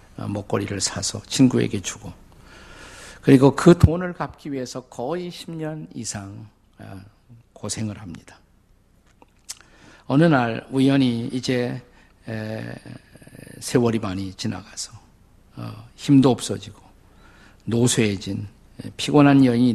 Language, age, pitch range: Korean, 50-69, 105-140 Hz